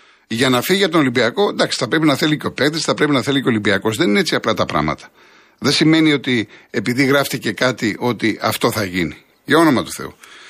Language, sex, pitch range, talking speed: Greek, male, 110-155 Hz, 235 wpm